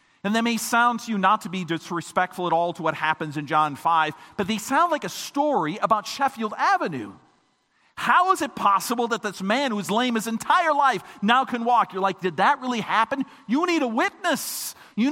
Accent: American